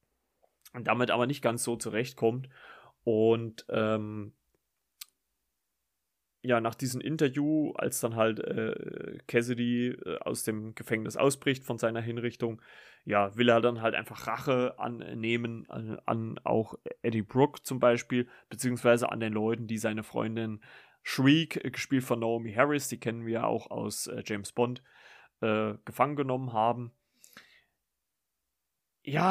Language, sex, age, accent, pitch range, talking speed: German, male, 30-49, German, 110-140 Hz, 135 wpm